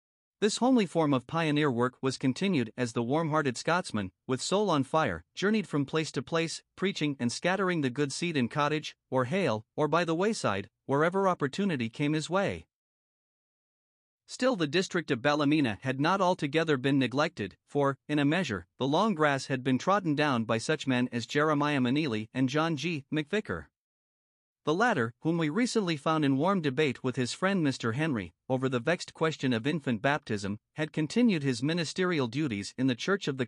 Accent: American